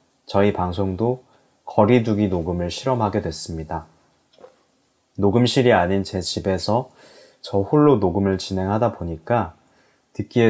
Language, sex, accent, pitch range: Korean, male, native, 90-110 Hz